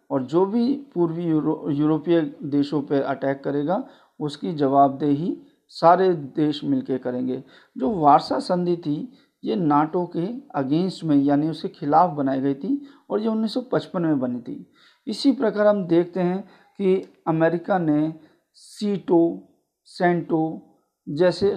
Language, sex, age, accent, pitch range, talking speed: Hindi, male, 50-69, native, 150-195 Hz, 140 wpm